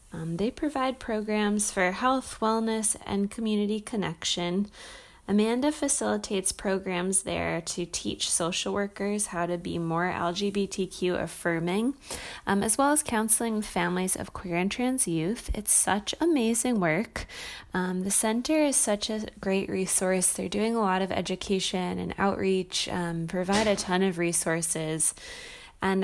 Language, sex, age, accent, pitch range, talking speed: English, female, 20-39, American, 180-220 Hz, 145 wpm